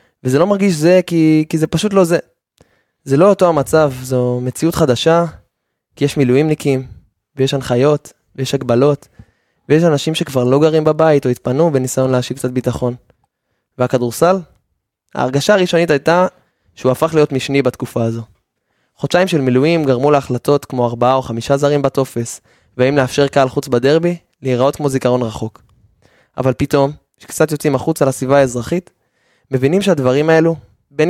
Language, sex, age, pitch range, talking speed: Hebrew, male, 20-39, 125-160 Hz, 145 wpm